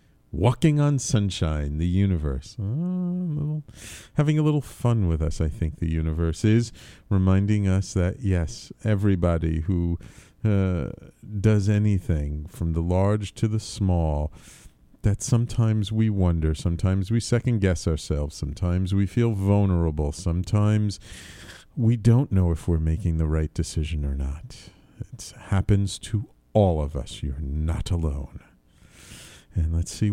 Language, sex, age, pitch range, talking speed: English, male, 40-59, 85-125 Hz, 135 wpm